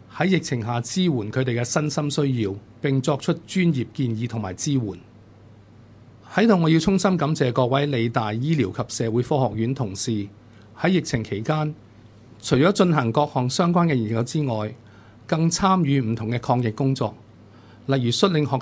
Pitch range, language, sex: 110-145 Hz, Chinese, male